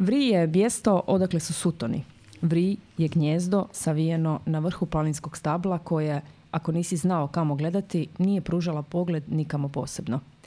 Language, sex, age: Croatian, female, 30-49